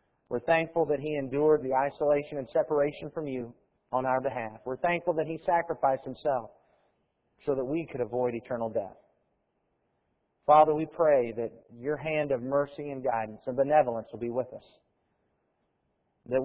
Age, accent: 40-59, American